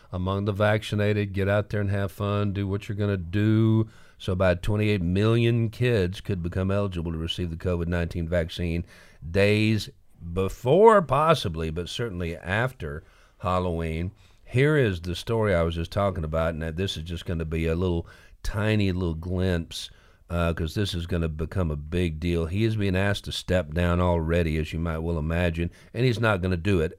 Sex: male